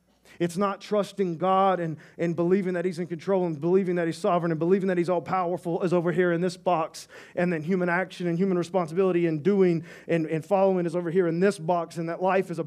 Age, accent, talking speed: 40-59, American, 240 wpm